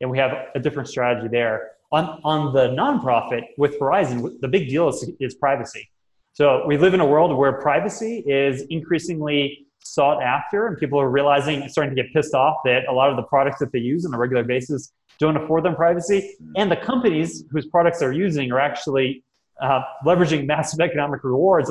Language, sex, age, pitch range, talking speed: English, male, 20-39, 130-160 Hz, 195 wpm